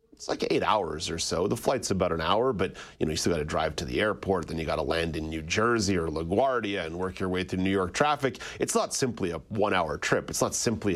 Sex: male